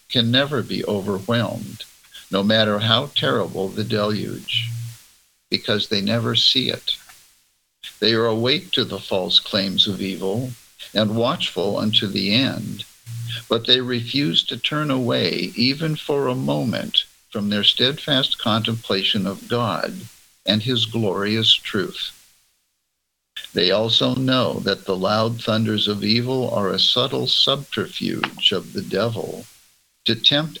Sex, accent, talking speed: male, American, 130 wpm